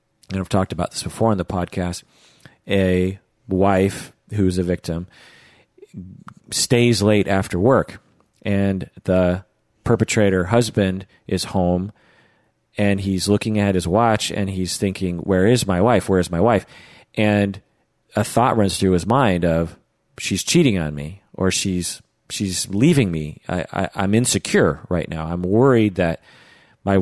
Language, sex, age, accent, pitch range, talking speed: English, male, 40-59, American, 90-110 Hz, 145 wpm